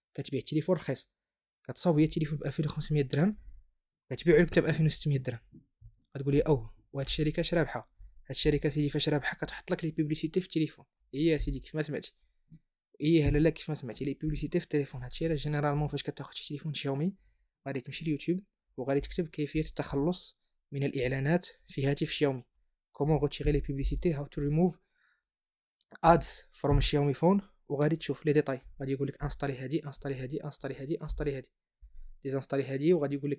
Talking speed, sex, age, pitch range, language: 195 wpm, male, 20-39, 140-155 Hz, Arabic